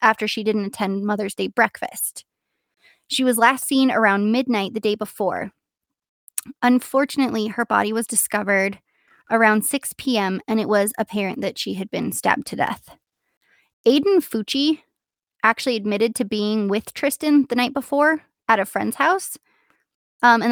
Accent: American